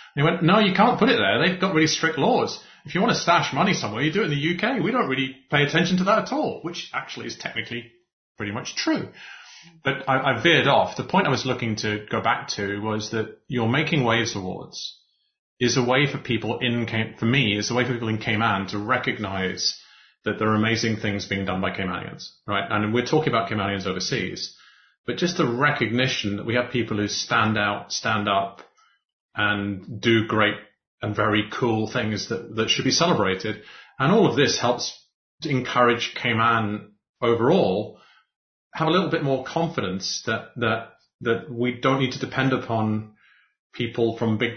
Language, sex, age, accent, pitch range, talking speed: English, male, 30-49, British, 105-135 Hz, 200 wpm